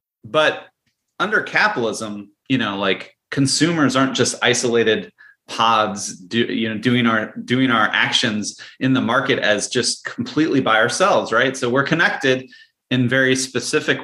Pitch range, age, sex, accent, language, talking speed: 105-130 Hz, 30-49, male, American, English, 135 wpm